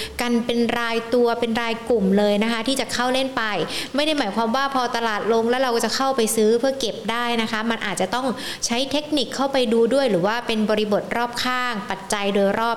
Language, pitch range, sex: Thai, 215-255 Hz, female